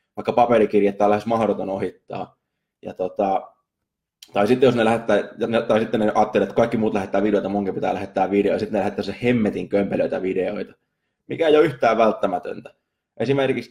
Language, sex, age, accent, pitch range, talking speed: Finnish, male, 20-39, native, 100-120 Hz, 170 wpm